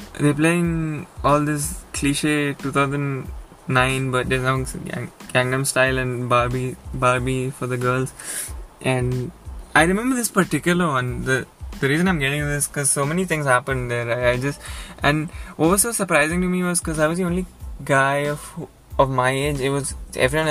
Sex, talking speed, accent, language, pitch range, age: male, 175 wpm, Indian, English, 130-165 Hz, 20-39